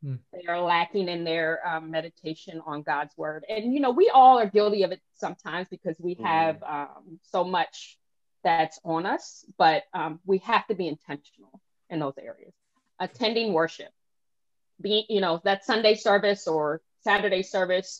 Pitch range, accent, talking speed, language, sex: 170-220 Hz, American, 165 wpm, English, female